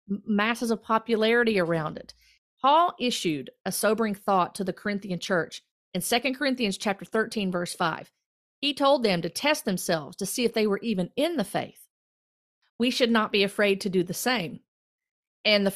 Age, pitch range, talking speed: 40-59, 185-225 Hz, 180 wpm